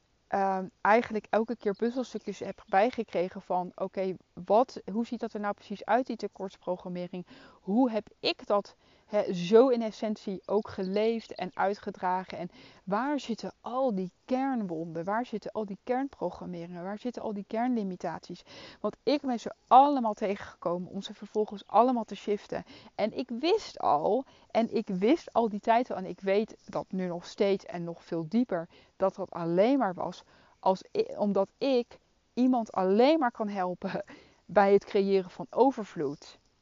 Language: Dutch